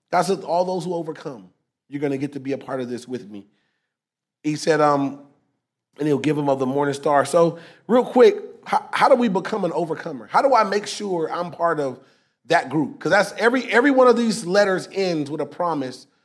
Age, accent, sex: 30-49, American, male